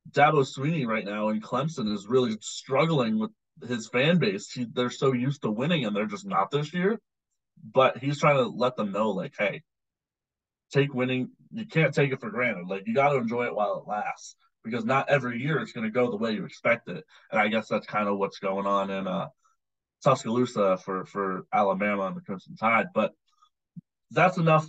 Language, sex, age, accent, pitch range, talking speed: English, male, 20-39, American, 115-155 Hz, 210 wpm